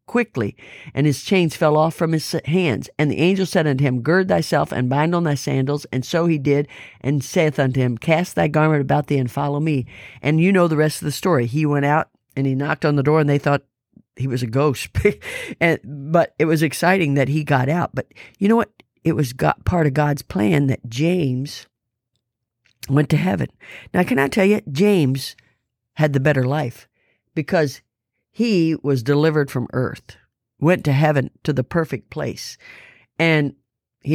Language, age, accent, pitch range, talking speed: English, 50-69, American, 125-160 Hz, 195 wpm